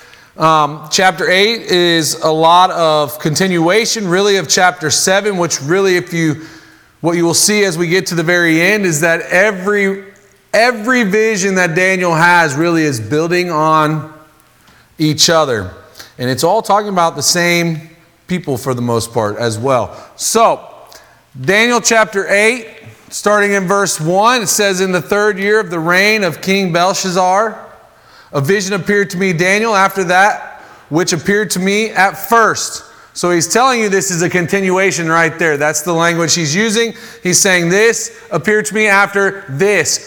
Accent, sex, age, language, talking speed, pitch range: American, male, 30-49, English, 170 wpm, 165-205 Hz